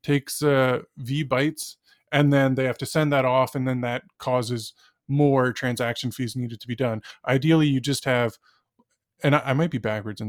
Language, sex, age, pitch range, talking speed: English, male, 20-39, 125-150 Hz, 200 wpm